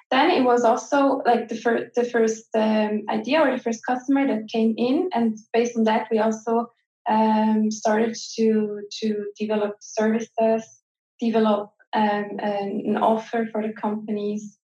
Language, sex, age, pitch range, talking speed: English, female, 20-39, 210-230 Hz, 150 wpm